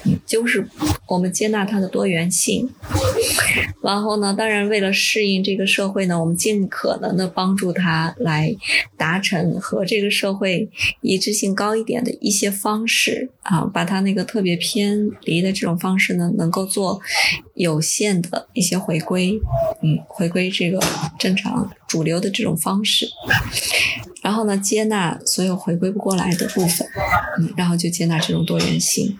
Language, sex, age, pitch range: Chinese, female, 20-39, 170-215 Hz